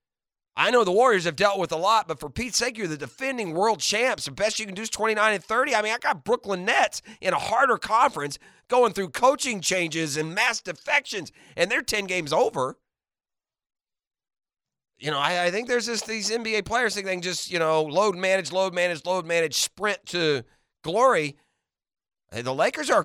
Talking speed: 205 wpm